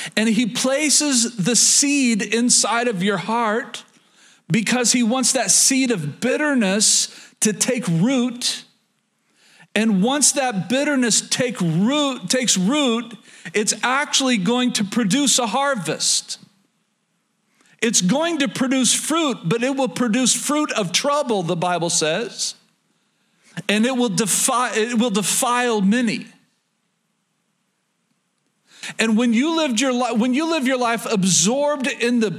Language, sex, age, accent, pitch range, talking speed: English, male, 50-69, American, 210-255 Hz, 130 wpm